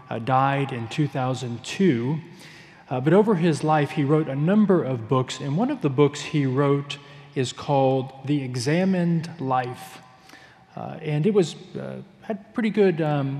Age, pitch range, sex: 40-59, 135-175 Hz, male